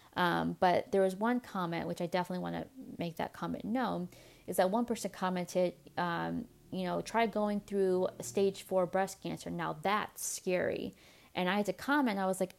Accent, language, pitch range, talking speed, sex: American, English, 180-225 Hz, 195 wpm, female